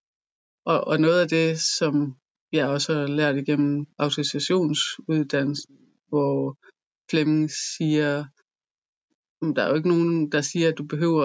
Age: 30-49